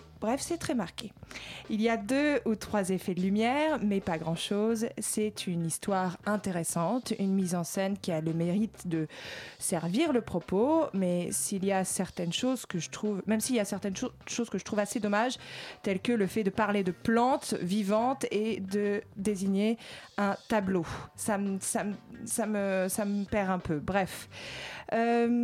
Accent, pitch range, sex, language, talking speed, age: French, 185-225 Hz, female, French, 195 wpm, 20-39